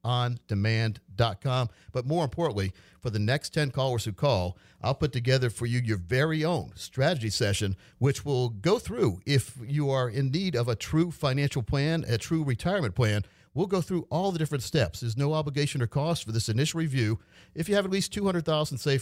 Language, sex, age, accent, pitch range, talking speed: English, male, 50-69, American, 115-150 Hz, 200 wpm